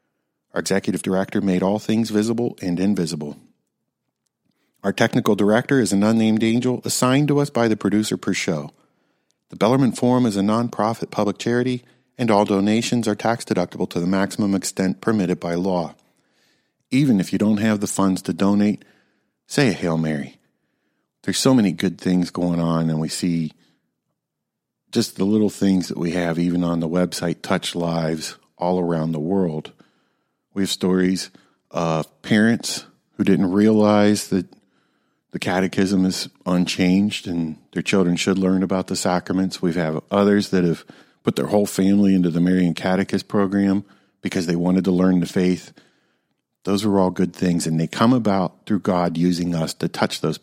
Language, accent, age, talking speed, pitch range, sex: English, American, 50-69, 170 wpm, 90-105 Hz, male